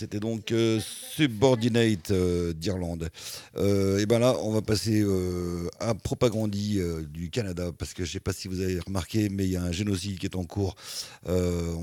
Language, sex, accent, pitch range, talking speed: French, male, French, 80-100 Hz, 205 wpm